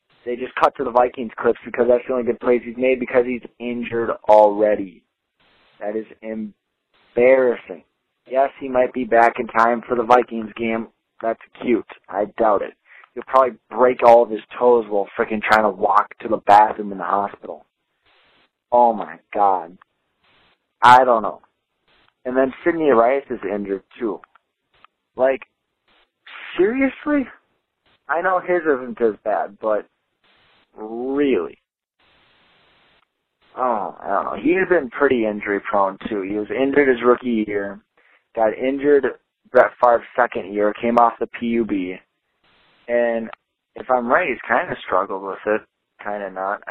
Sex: male